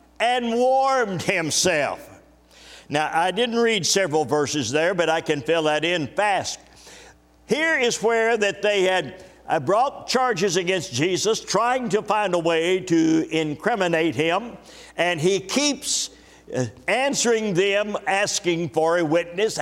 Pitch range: 175-235 Hz